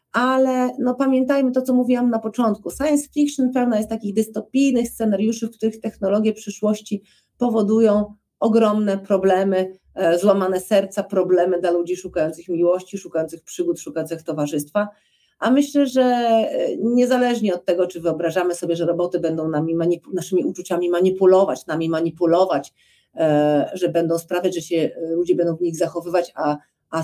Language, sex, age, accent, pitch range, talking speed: Polish, female, 40-59, native, 175-220 Hz, 145 wpm